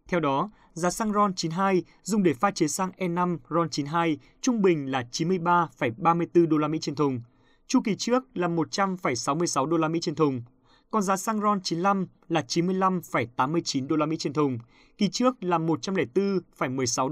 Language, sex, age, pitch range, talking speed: Vietnamese, male, 20-39, 145-190 Hz, 170 wpm